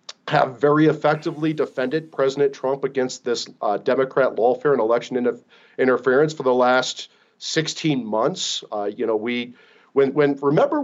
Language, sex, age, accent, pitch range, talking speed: English, male, 40-59, American, 130-160 Hz, 150 wpm